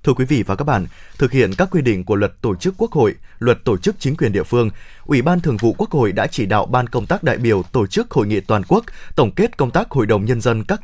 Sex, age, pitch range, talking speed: male, 20-39, 115-145 Hz, 295 wpm